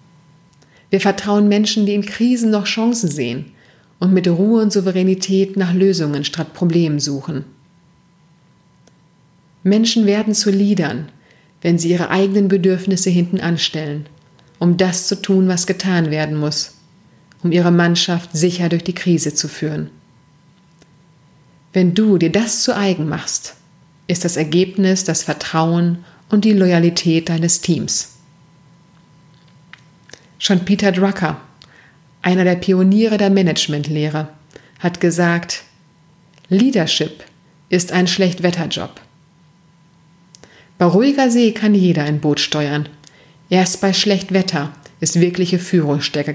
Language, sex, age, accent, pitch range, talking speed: German, female, 30-49, German, 160-185 Hz, 120 wpm